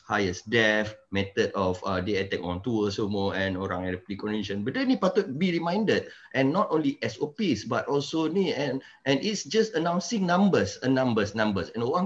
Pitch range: 105-155 Hz